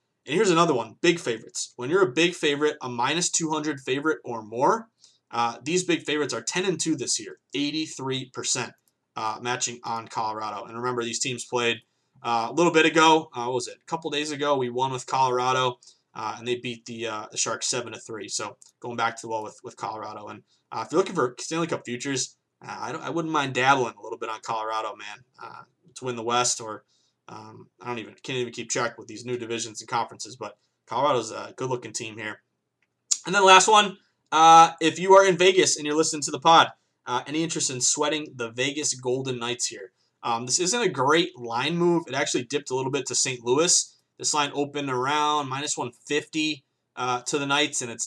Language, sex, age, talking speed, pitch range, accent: English, male, 20-39, 220 wpm, 120-155 Hz, American